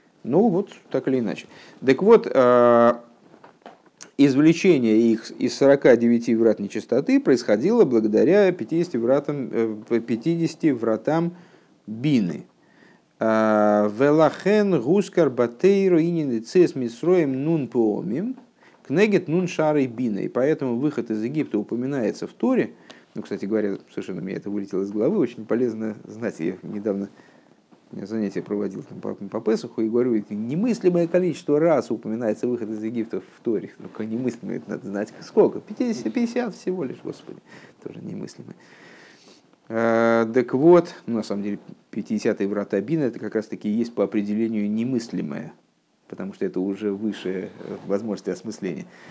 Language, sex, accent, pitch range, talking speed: Russian, male, native, 110-165 Hz, 120 wpm